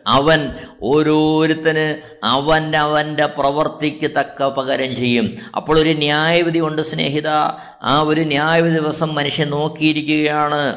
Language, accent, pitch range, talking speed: Malayalam, native, 145-155 Hz, 105 wpm